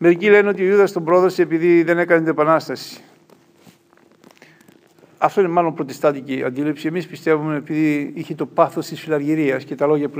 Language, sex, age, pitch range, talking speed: Greek, male, 50-69, 145-180 Hz, 170 wpm